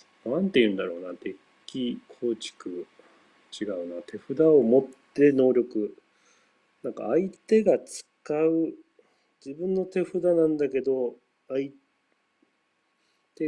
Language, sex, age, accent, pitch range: Japanese, male, 40-59, native, 105-145 Hz